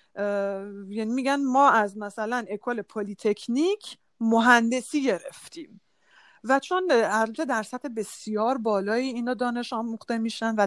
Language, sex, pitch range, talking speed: Persian, female, 205-275 Hz, 125 wpm